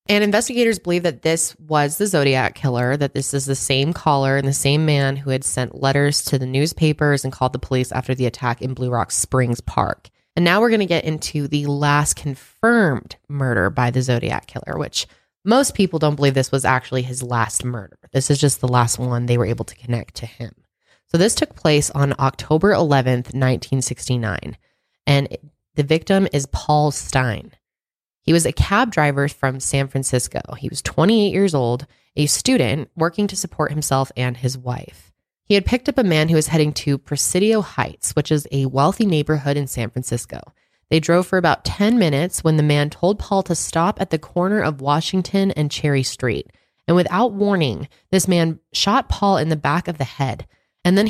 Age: 20-39